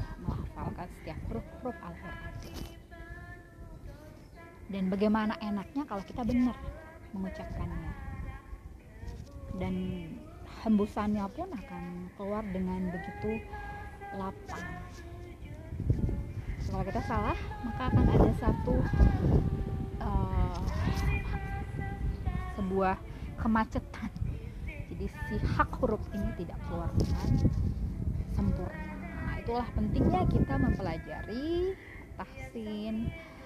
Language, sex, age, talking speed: Indonesian, female, 20-39, 75 wpm